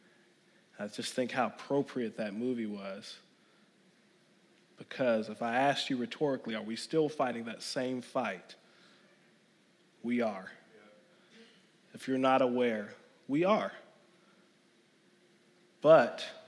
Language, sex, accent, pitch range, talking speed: English, male, American, 125-170 Hz, 110 wpm